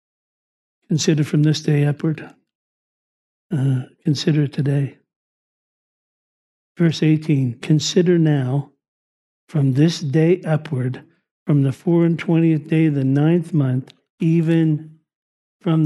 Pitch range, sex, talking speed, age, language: 145-170 Hz, male, 105 wpm, 60-79, English